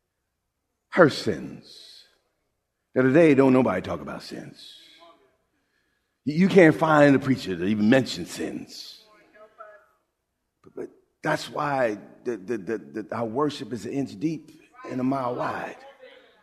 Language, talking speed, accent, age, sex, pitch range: English, 120 wpm, American, 50-69, male, 195-300 Hz